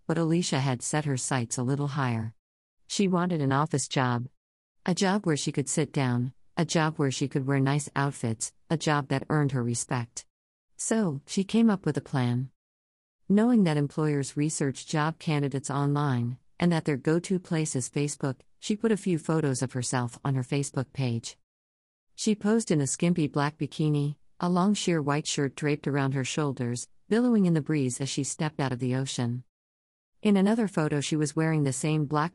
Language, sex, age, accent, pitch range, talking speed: English, female, 50-69, American, 130-160 Hz, 195 wpm